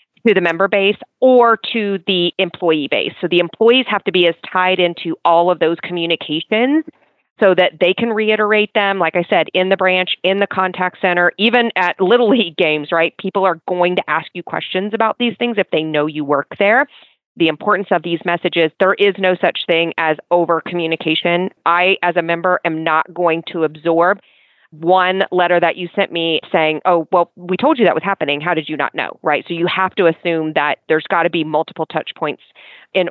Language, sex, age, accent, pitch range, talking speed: English, female, 30-49, American, 165-195 Hz, 210 wpm